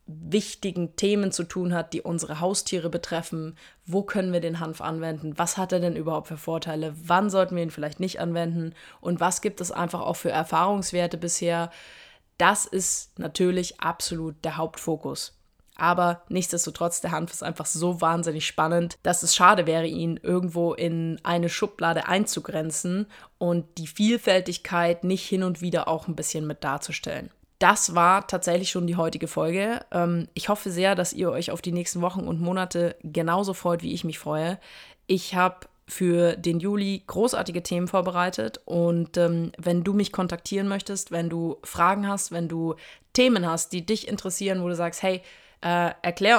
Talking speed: 170 wpm